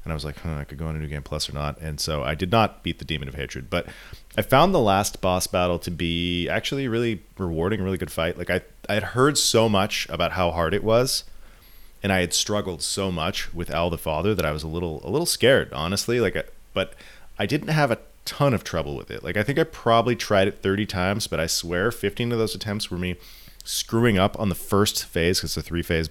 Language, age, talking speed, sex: English, 30-49, 255 wpm, male